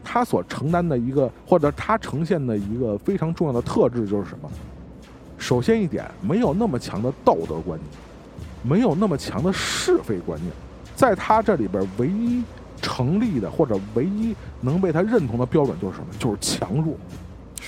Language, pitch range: Chinese, 110-180 Hz